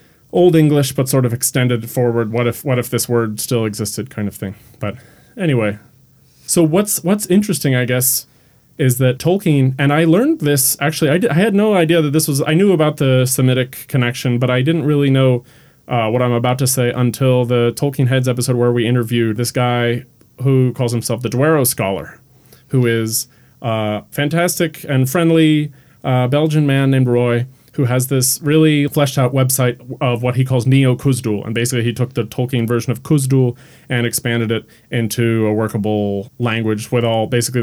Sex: male